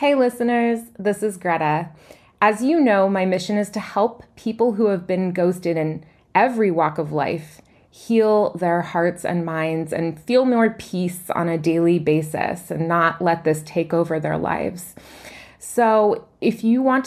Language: English